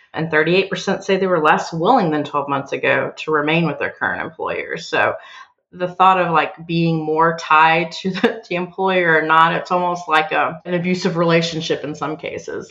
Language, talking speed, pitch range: English, 200 wpm, 155-190 Hz